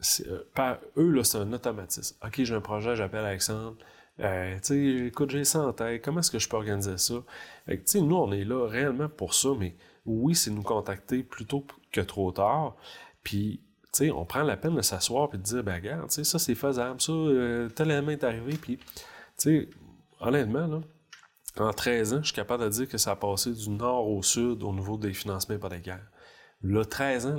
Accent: Canadian